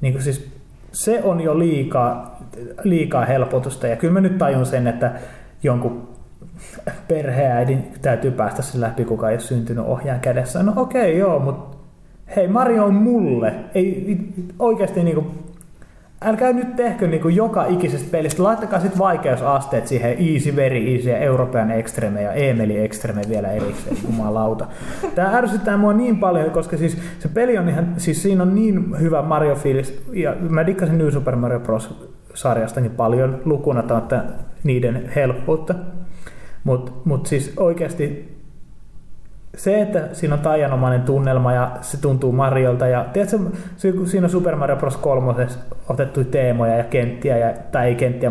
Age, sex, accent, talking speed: 30-49, male, native, 150 wpm